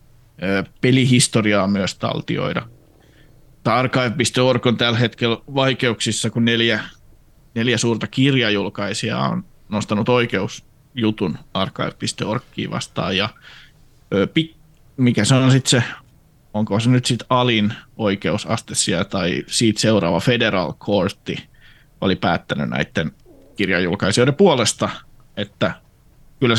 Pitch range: 105-125 Hz